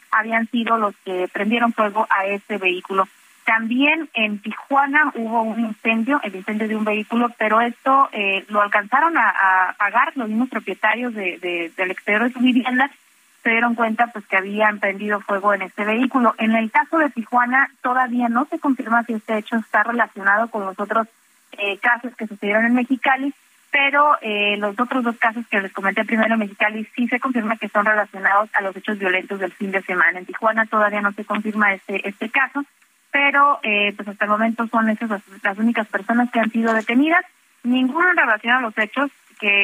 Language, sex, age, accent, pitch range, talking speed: Spanish, female, 20-39, Mexican, 205-245 Hz, 195 wpm